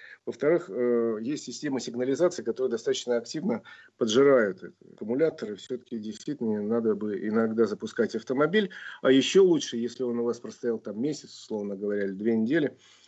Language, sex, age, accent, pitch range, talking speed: Russian, male, 50-69, native, 120-155 Hz, 140 wpm